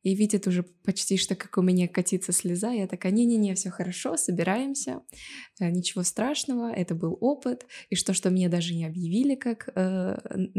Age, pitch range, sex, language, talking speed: 20-39, 180-210 Hz, female, Russian, 170 wpm